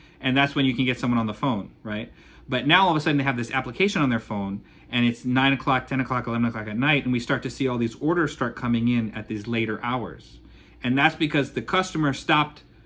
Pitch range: 115-140 Hz